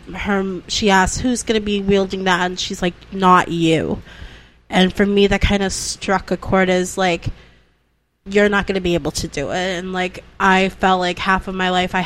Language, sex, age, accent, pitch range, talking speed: English, female, 20-39, American, 180-205 Hz, 220 wpm